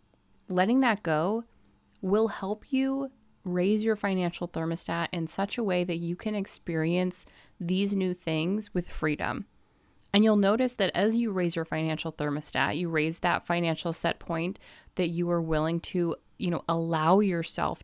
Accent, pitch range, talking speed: American, 170-220 Hz, 160 wpm